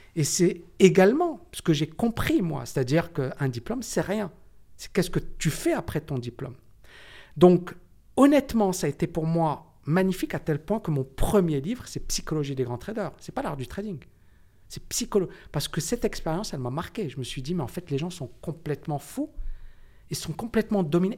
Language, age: French, 50-69